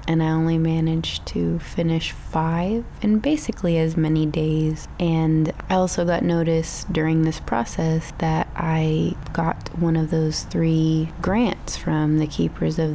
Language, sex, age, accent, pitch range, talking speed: English, female, 20-39, American, 155-175 Hz, 150 wpm